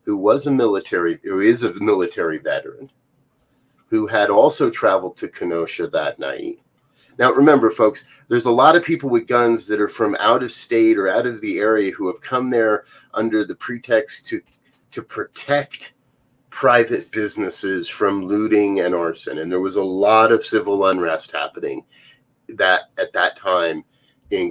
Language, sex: English, male